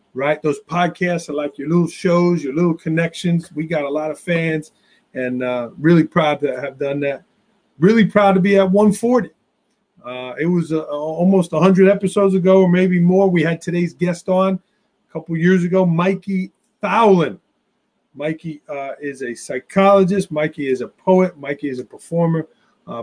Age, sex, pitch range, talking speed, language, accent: 40-59, male, 150-190 Hz, 175 wpm, English, American